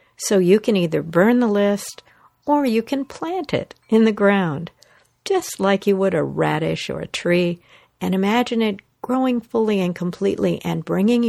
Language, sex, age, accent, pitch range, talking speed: English, female, 60-79, American, 160-230 Hz, 175 wpm